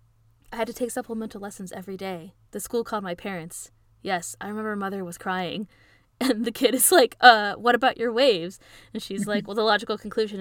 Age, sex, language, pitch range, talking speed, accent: 20-39, female, English, 180-235 Hz, 210 wpm, American